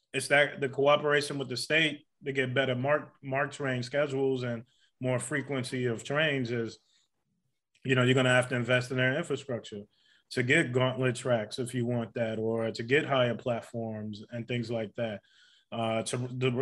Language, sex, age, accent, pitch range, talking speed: English, male, 20-39, American, 120-135 Hz, 185 wpm